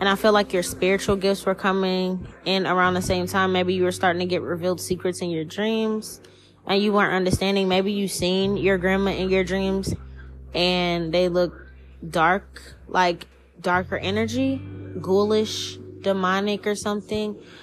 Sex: female